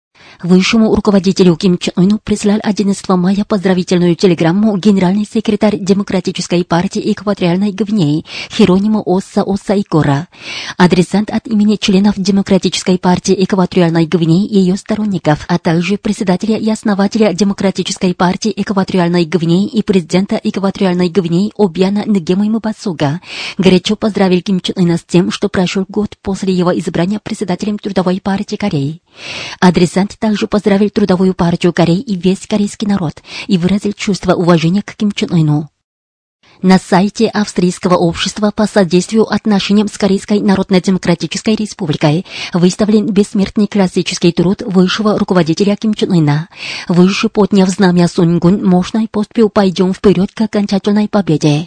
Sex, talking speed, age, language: female, 125 wpm, 30-49, Russian